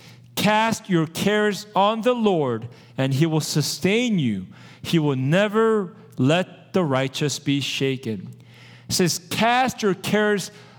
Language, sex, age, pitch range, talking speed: English, male, 40-59, 130-200 Hz, 135 wpm